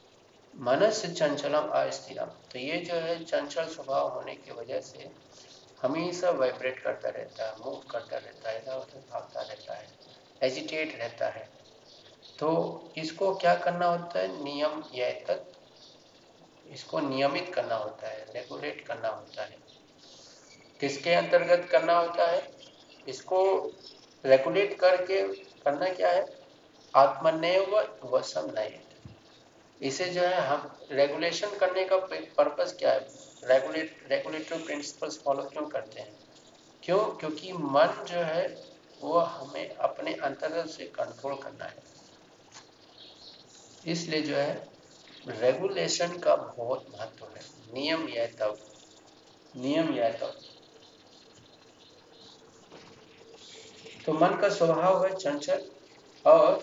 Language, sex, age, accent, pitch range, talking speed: Hindi, male, 50-69, native, 135-175 Hz, 120 wpm